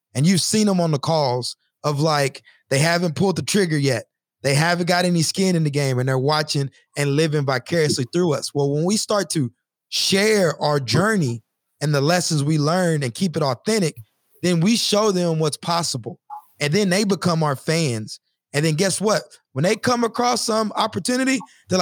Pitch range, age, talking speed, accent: 145-185 Hz, 20-39, 195 wpm, American